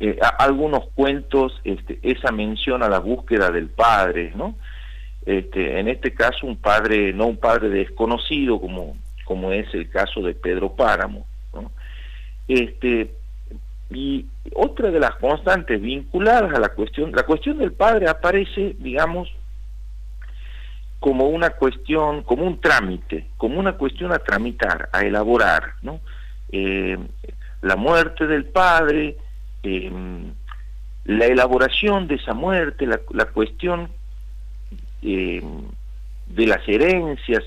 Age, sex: 50-69, male